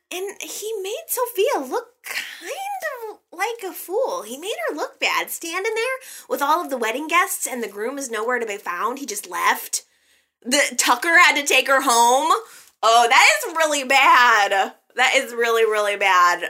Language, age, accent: English, 20-39, American